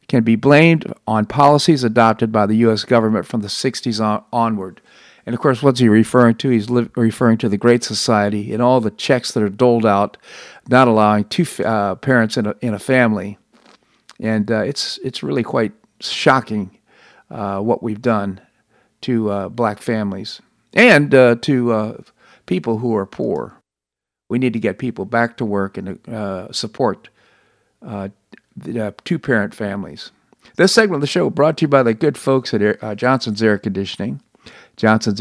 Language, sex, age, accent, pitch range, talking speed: English, male, 50-69, American, 105-125 Hz, 180 wpm